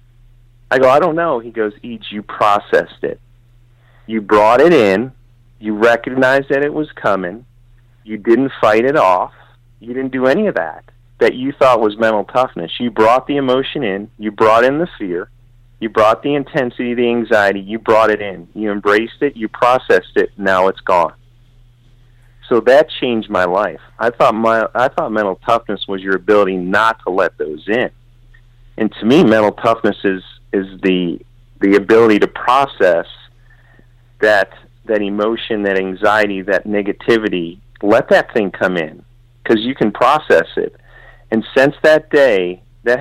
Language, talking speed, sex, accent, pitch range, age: English, 170 wpm, male, American, 105-120 Hz, 40-59